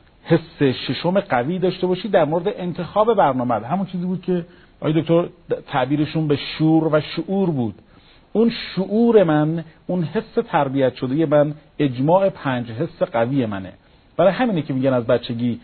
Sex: male